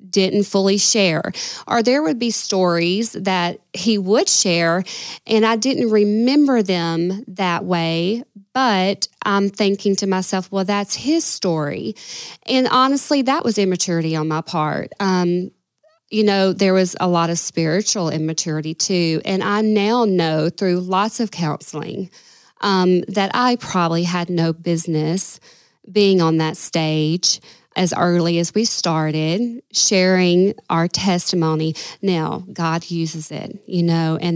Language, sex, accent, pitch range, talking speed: English, female, American, 170-205 Hz, 140 wpm